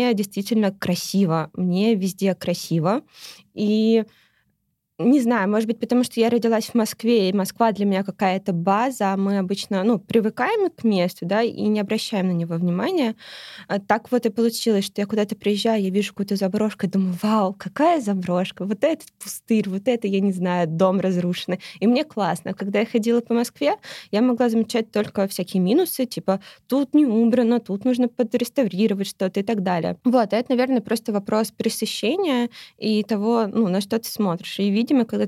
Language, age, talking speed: Russian, 20-39, 175 wpm